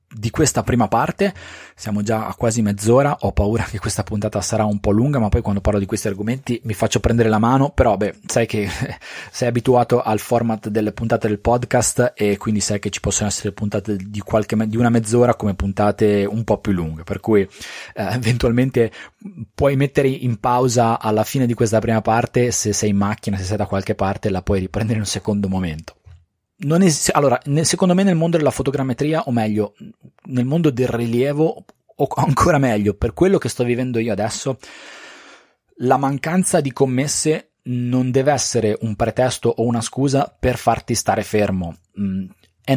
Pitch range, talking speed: 105-125 Hz, 185 wpm